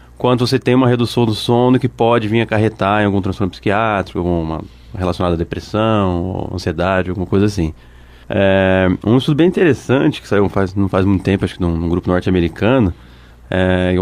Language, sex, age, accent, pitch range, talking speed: Portuguese, male, 20-39, Brazilian, 90-120 Hz, 180 wpm